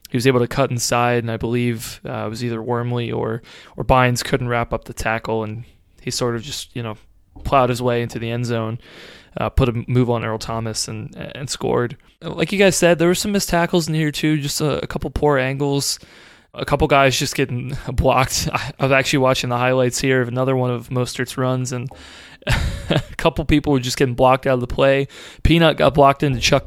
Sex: male